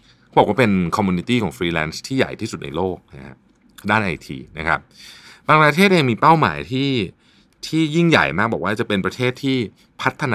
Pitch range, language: 85-130 Hz, Thai